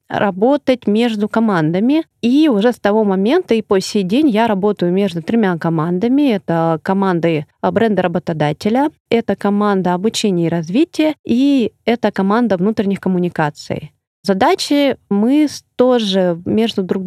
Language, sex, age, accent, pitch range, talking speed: Russian, female, 30-49, native, 185-235 Hz, 125 wpm